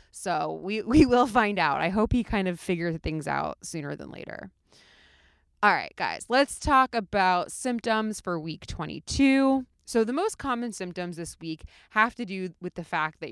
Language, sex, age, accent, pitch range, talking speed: English, female, 20-39, American, 165-215 Hz, 185 wpm